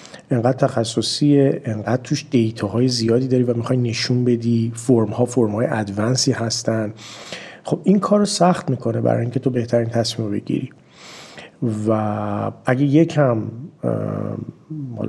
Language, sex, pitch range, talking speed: Persian, male, 115-140 Hz, 130 wpm